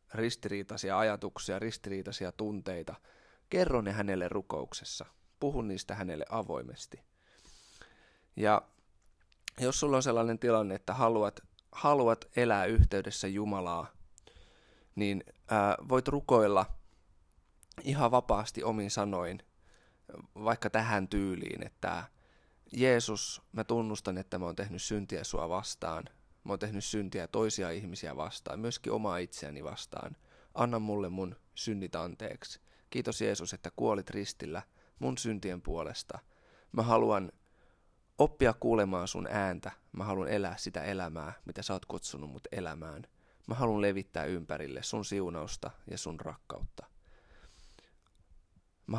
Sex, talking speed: male, 120 wpm